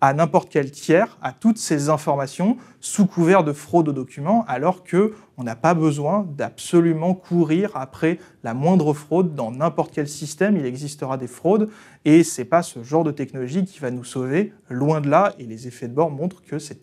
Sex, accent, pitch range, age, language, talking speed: male, French, 135-175 Hz, 30-49, French, 200 wpm